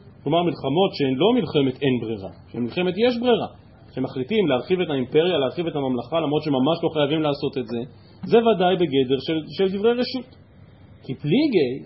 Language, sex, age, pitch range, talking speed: Hebrew, male, 40-59, 125-185 Hz, 170 wpm